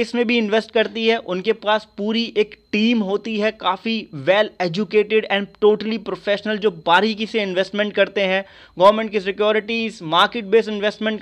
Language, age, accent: Hindi, 30-49, native